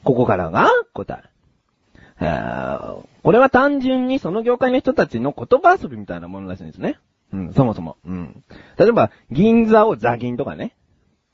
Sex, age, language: male, 30-49, Japanese